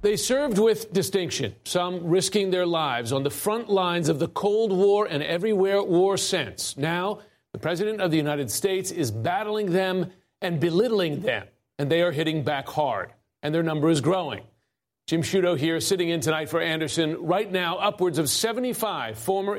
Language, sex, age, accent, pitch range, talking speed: English, male, 40-59, American, 155-195 Hz, 180 wpm